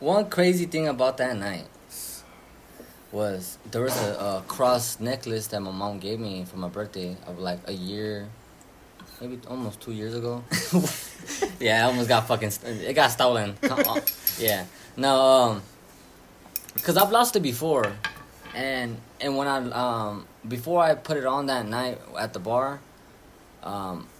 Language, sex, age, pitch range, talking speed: English, male, 20-39, 105-130 Hz, 155 wpm